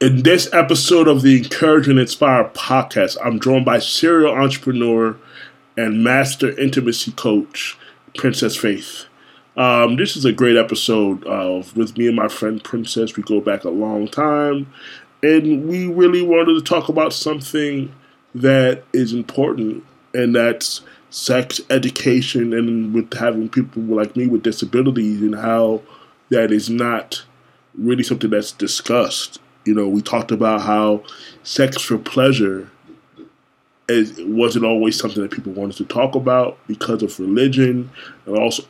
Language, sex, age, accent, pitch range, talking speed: English, male, 20-39, American, 110-135 Hz, 145 wpm